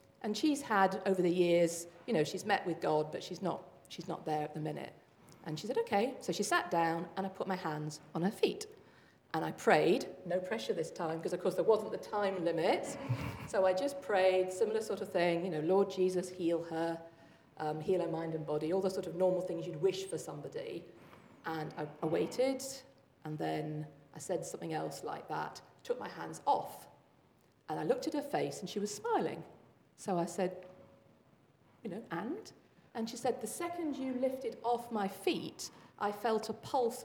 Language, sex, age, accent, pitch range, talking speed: English, female, 40-59, British, 170-245 Hz, 205 wpm